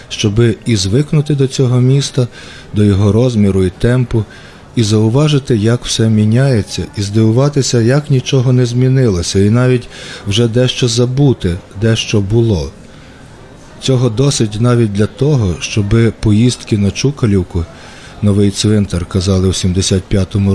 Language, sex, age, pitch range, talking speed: Ukrainian, male, 40-59, 100-125 Hz, 125 wpm